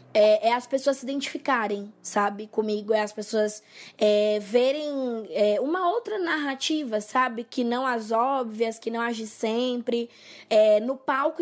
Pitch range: 215-260 Hz